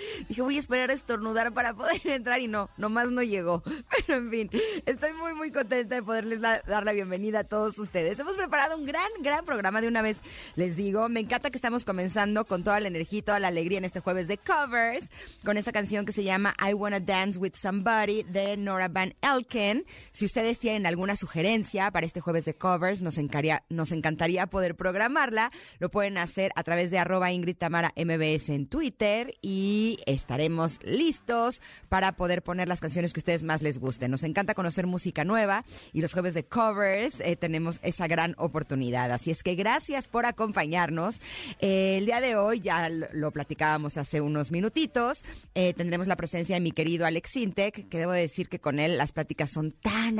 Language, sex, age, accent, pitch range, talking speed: Spanish, female, 30-49, Mexican, 170-225 Hz, 200 wpm